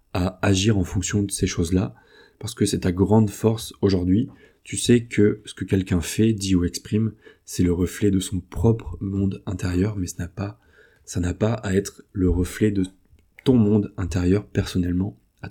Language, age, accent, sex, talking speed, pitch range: French, 20-39, French, male, 190 wpm, 90-105 Hz